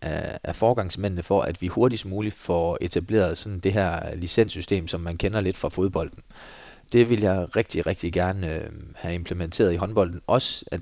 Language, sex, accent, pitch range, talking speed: Danish, male, native, 85-105 Hz, 165 wpm